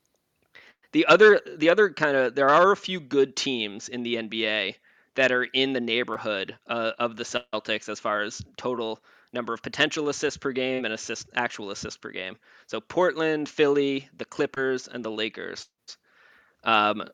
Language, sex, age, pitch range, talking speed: English, male, 20-39, 115-155 Hz, 170 wpm